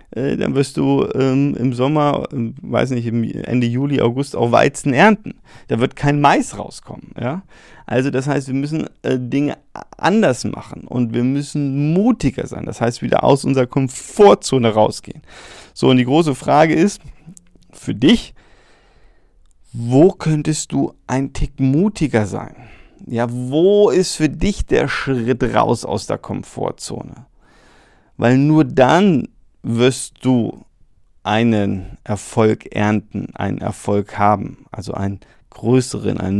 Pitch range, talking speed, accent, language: 115-145 Hz, 140 wpm, German, German